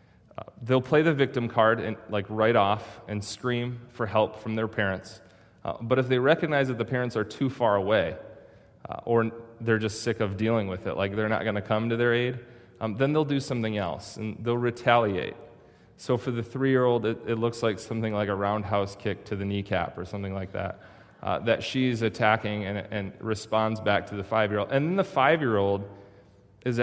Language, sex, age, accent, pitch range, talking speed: English, male, 30-49, American, 100-120 Hz, 205 wpm